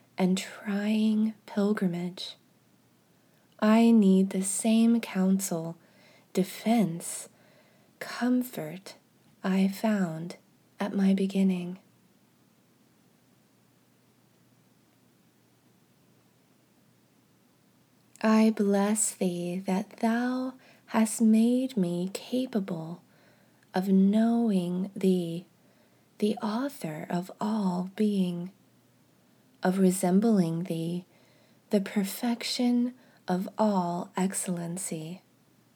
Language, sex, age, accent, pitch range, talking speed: English, female, 20-39, American, 180-225 Hz, 65 wpm